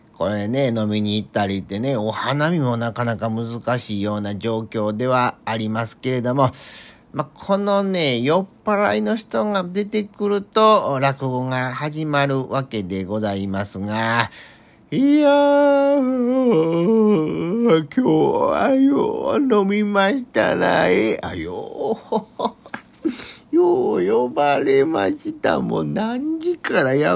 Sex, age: male, 40-59